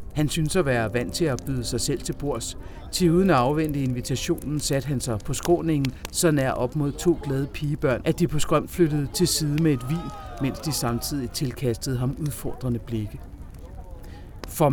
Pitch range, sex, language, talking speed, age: 120-155 Hz, male, English, 185 wpm, 50-69